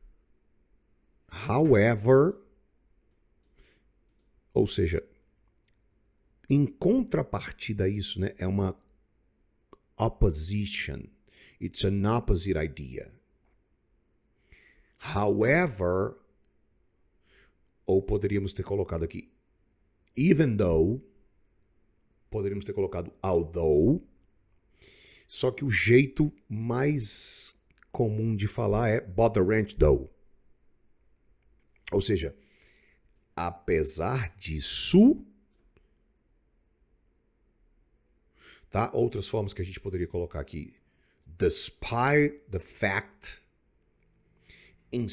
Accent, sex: Brazilian, male